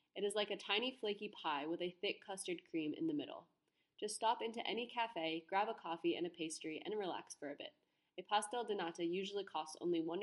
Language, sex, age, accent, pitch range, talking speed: English, female, 20-39, American, 175-215 Hz, 230 wpm